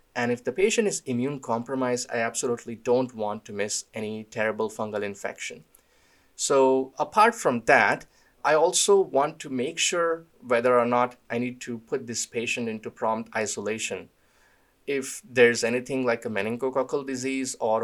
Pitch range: 105-135 Hz